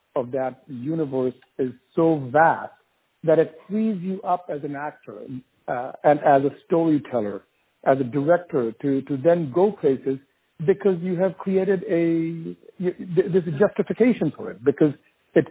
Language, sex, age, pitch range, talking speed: English, male, 60-79, 140-190 Hz, 155 wpm